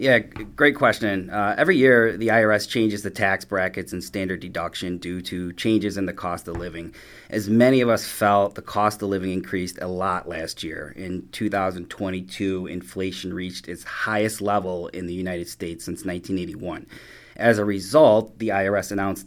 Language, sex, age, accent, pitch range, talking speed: English, male, 30-49, American, 95-110 Hz, 175 wpm